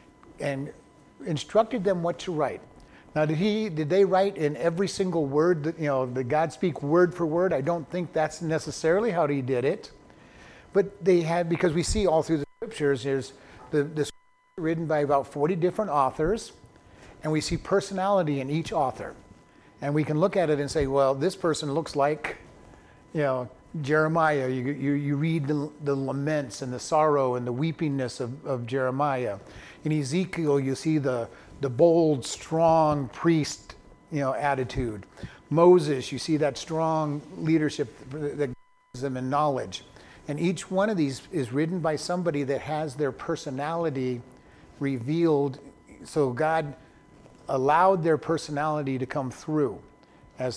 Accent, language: American, English